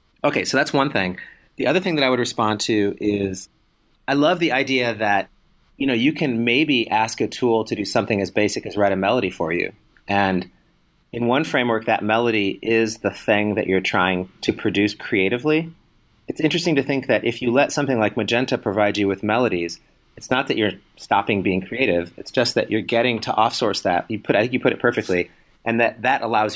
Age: 30-49